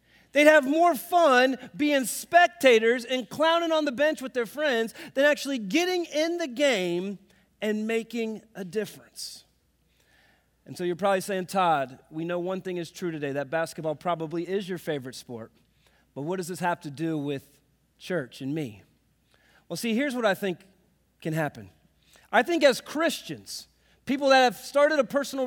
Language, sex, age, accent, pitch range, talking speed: English, male, 40-59, American, 165-270 Hz, 170 wpm